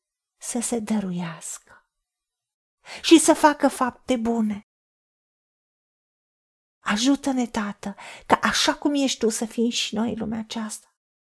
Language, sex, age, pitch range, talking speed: Romanian, female, 40-59, 215-275 Hz, 110 wpm